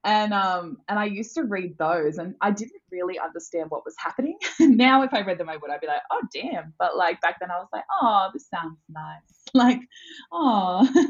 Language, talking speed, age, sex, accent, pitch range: English, 220 wpm, 20-39, female, Australian, 165-250 Hz